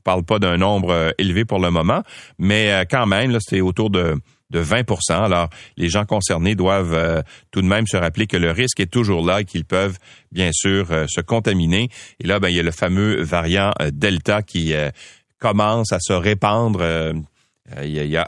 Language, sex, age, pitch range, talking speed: French, male, 40-59, 90-125 Hz, 200 wpm